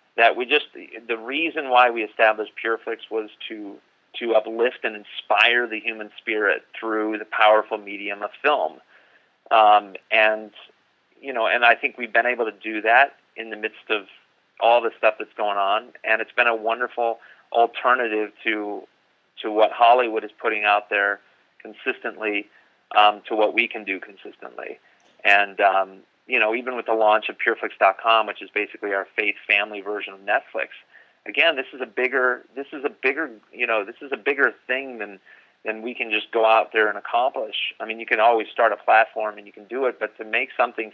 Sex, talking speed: male, 195 wpm